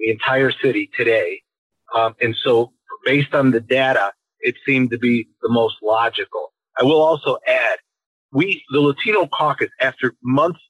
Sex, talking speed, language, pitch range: male, 155 wpm, English, 130-170 Hz